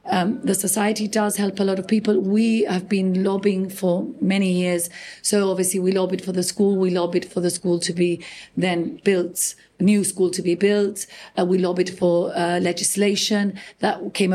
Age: 40-59